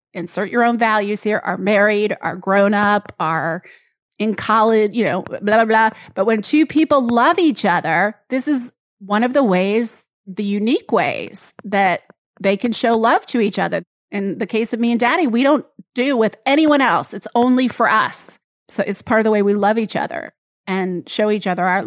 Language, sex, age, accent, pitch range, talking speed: English, female, 30-49, American, 205-245 Hz, 205 wpm